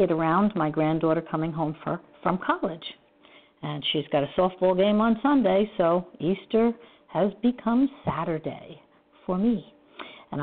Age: 50-69